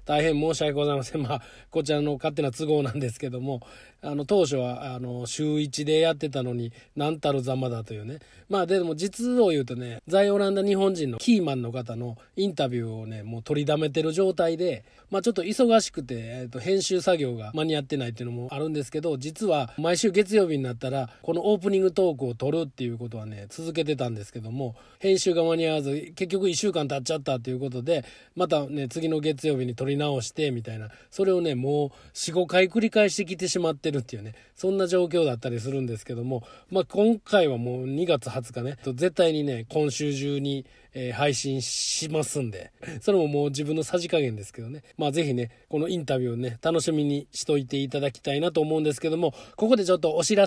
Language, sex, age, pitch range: Japanese, male, 20-39, 130-175 Hz